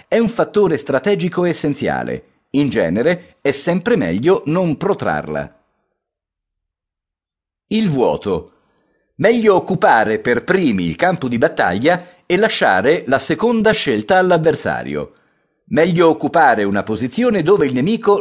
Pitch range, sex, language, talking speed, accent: 145-205 Hz, male, Italian, 115 wpm, native